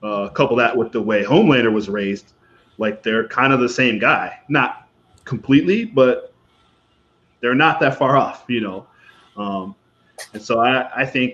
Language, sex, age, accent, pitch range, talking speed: English, male, 20-39, American, 105-150 Hz, 170 wpm